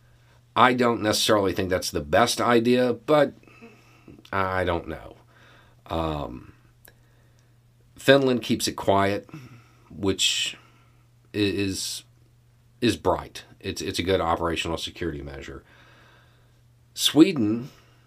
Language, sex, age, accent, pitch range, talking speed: English, male, 40-59, American, 85-120 Hz, 95 wpm